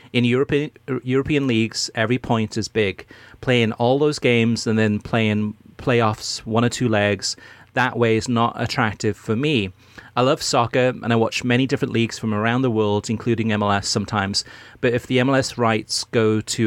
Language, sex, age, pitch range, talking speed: English, male, 30-49, 110-125 Hz, 180 wpm